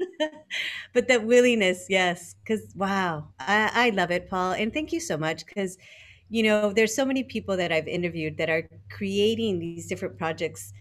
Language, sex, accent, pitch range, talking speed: English, female, American, 165-220 Hz, 180 wpm